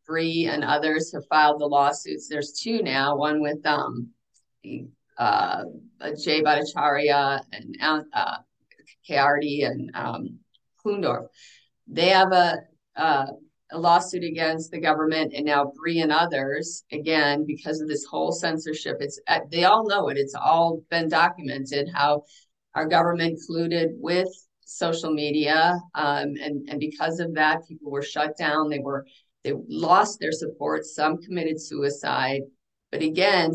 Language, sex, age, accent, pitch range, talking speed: English, female, 50-69, American, 145-170 Hz, 145 wpm